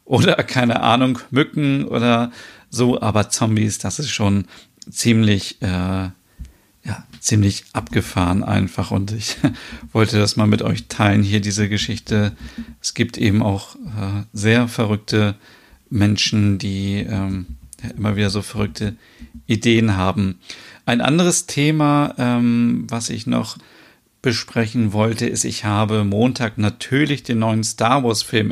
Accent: German